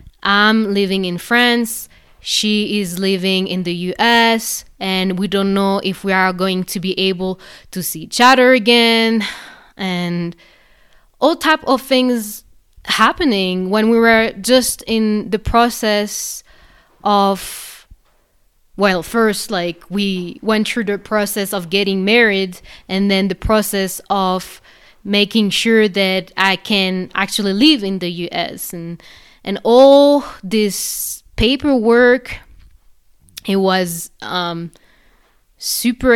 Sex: female